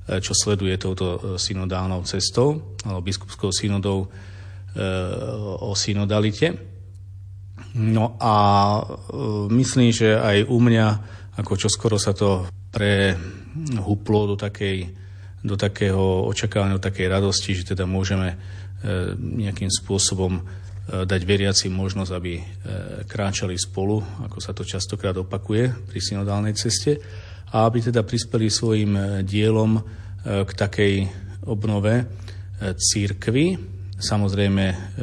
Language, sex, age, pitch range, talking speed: Slovak, male, 40-59, 95-105 Hz, 110 wpm